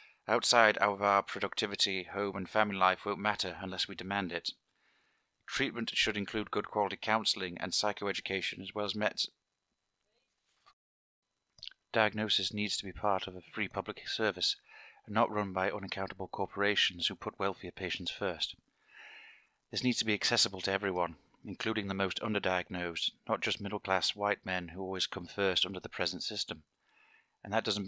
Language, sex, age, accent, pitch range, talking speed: English, male, 30-49, British, 95-105 Hz, 160 wpm